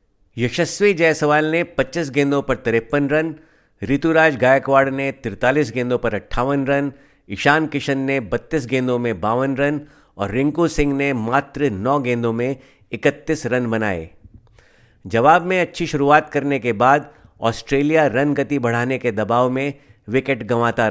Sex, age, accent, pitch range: male, 50-69, native, 115-145 Hz